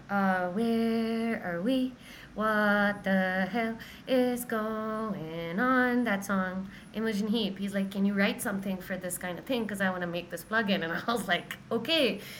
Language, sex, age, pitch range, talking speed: English, female, 20-39, 185-235 Hz, 180 wpm